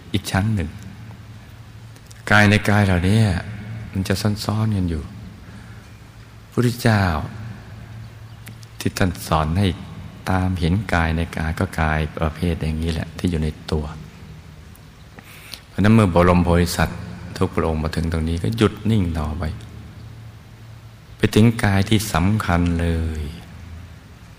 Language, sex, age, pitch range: Thai, male, 60-79, 80-105 Hz